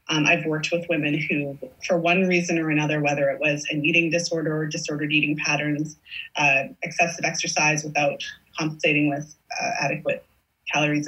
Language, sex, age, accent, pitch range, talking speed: English, female, 30-49, American, 150-180 Hz, 165 wpm